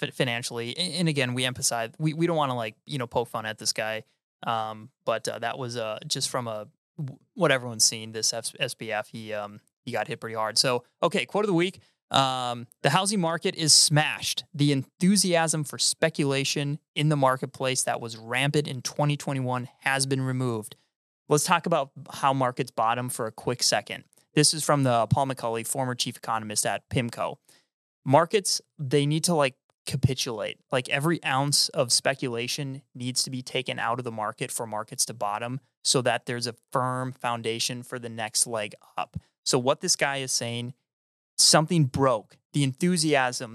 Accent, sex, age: American, male, 20-39